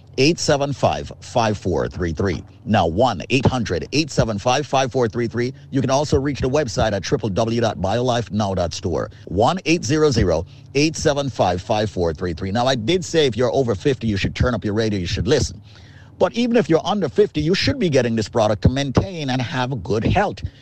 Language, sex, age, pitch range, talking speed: English, male, 50-69, 110-150 Hz, 135 wpm